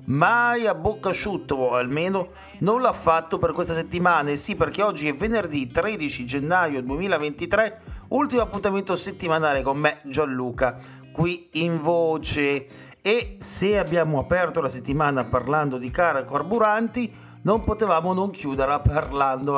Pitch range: 140-190 Hz